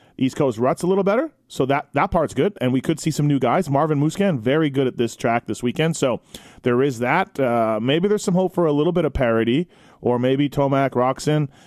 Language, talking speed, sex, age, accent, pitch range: English, 235 wpm, male, 30-49, American, 125-155 Hz